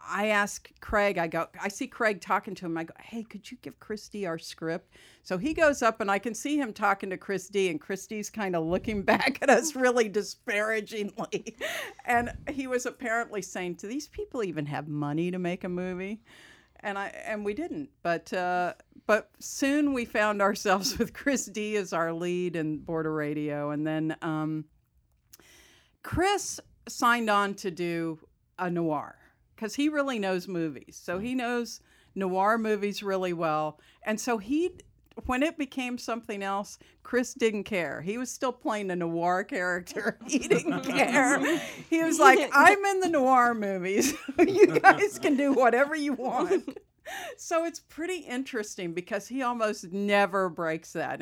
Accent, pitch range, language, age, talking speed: American, 175-250 Hz, English, 50-69, 175 wpm